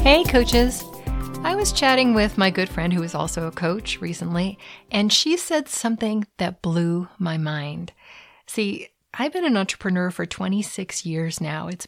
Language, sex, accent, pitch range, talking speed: English, female, American, 165-230 Hz, 165 wpm